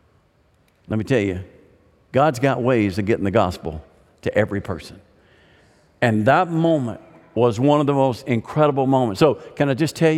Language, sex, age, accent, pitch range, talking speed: English, male, 50-69, American, 110-155 Hz, 170 wpm